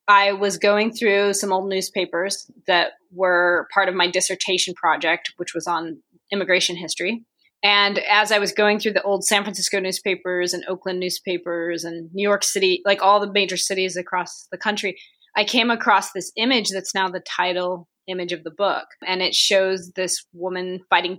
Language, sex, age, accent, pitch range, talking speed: English, female, 20-39, American, 180-210 Hz, 180 wpm